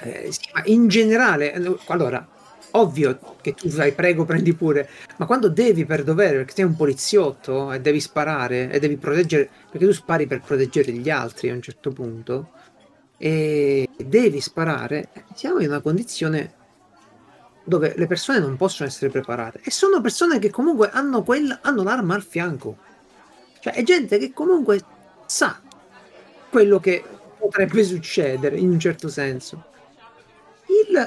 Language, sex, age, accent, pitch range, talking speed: Italian, male, 40-59, native, 145-215 Hz, 145 wpm